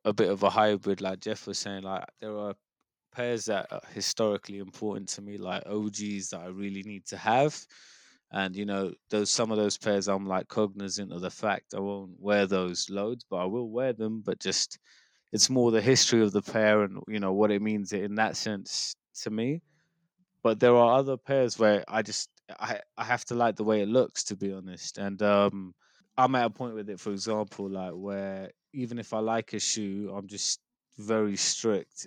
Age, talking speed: 20-39, 210 wpm